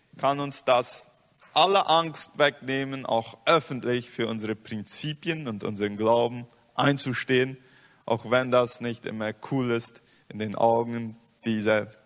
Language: Spanish